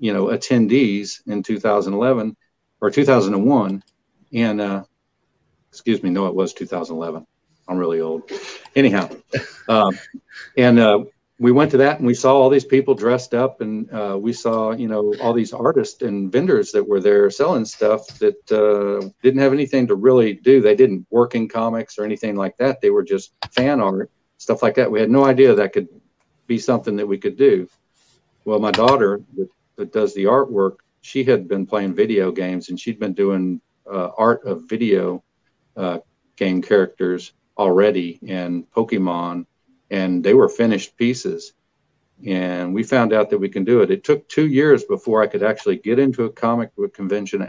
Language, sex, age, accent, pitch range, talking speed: English, male, 50-69, American, 100-130 Hz, 180 wpm